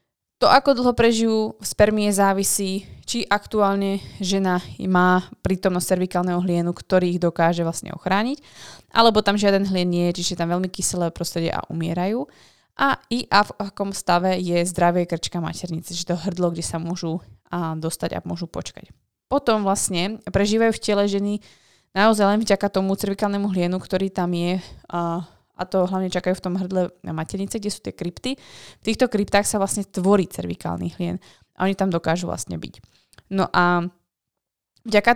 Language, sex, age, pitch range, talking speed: Slovak, female, 20-39, 175-205 Hz, 170 wpm